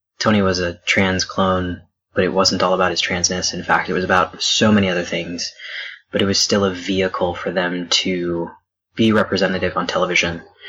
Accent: American